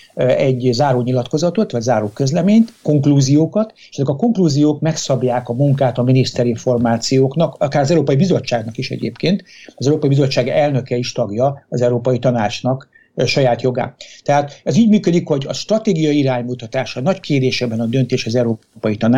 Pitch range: 125-150 Hz